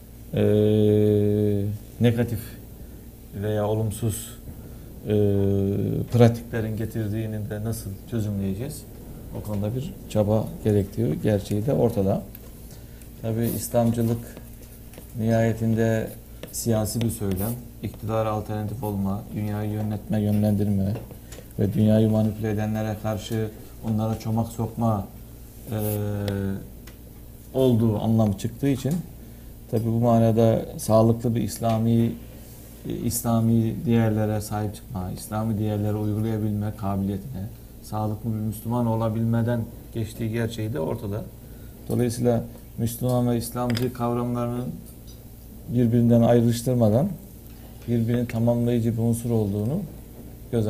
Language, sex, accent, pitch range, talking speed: Turkish, male, native, 105-115 Hz, 90 wpm